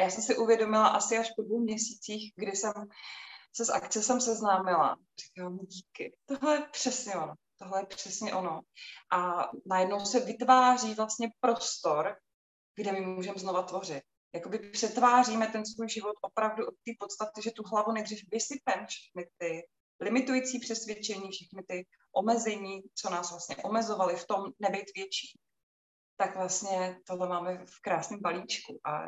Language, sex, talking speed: Czech, female, 155 wpm